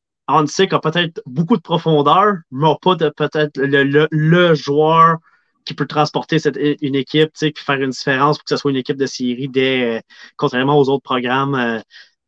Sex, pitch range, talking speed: male, 135-160 Hz, 190 wpm